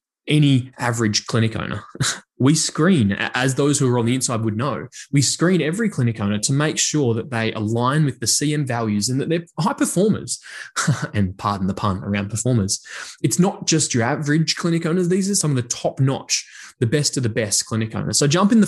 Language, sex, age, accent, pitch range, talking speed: English, male, 20-39, Australian, 115-160 Hz, 210 wpm